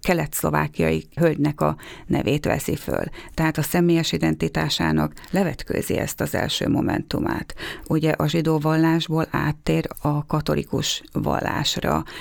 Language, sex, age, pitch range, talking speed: Hungarian, female, 30-49, 145-170 Hz, 115 wpm